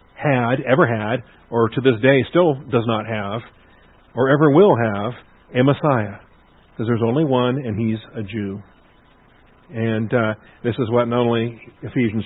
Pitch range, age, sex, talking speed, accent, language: 115-145 Hz, 50-69, male, 160 wpm, American, English